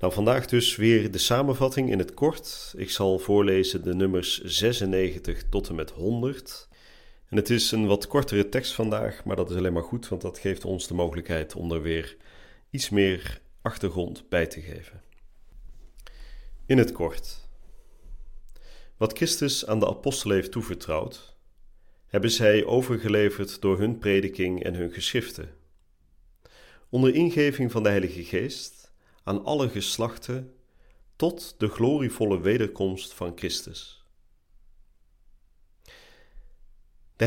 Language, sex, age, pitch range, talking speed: Dutch, male, 40-59, 90-115 Hz, 130 wpm